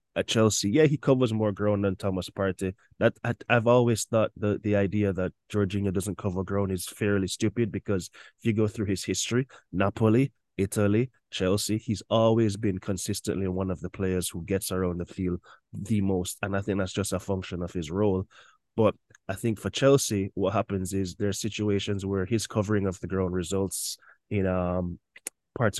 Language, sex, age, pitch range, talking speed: English, male, 20-39, 95-110 Hz, 190 wpm